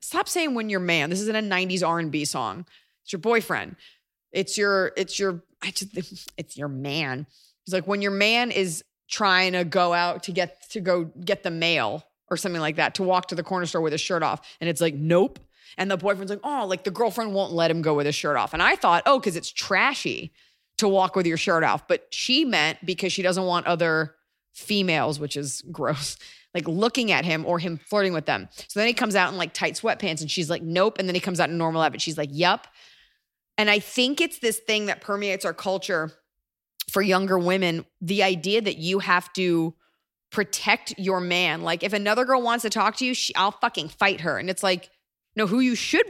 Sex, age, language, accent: female, 20-39, English, American